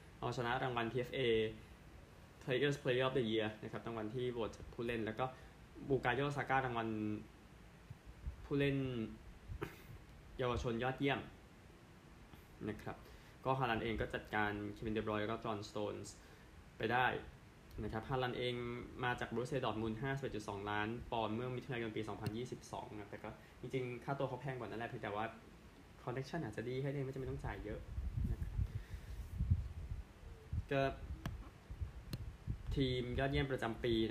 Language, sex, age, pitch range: Thai, male, 20-39, 105-125 Hz